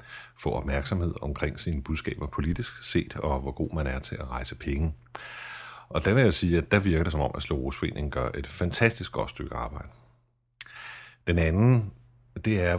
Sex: male